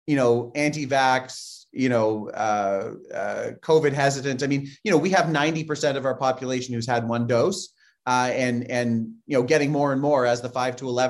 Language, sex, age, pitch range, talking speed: English, male, 30-49, 125-155 Hz, 195 wpm